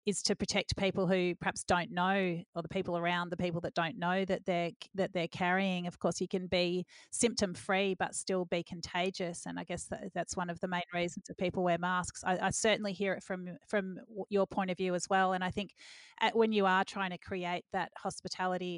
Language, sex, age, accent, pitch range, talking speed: English, female, 30-49, Australian, 180-205 Hz, 215 wpm